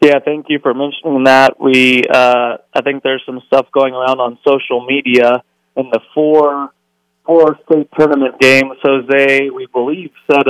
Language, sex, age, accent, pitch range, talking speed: English, male, 20-39, American, 115-135 Hz, 165 wpm